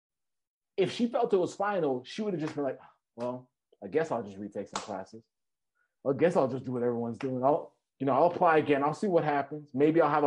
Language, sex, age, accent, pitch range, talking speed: English, male, 30-49, American, 135-195 Hz, 240 wpm